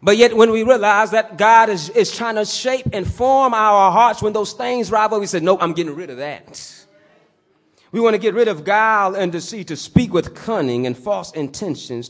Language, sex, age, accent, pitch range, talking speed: English, male, 30-49, American, 180-215 Hz, 225 wpm